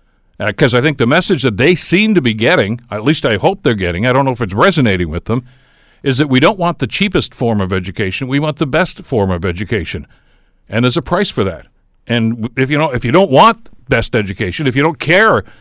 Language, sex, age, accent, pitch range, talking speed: English, male, 60-79, American, 115-155 Hz, 240 wpm